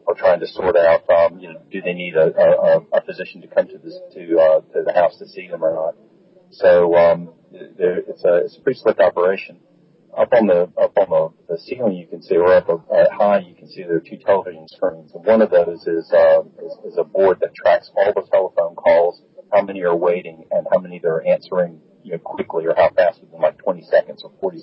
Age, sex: 40-59, male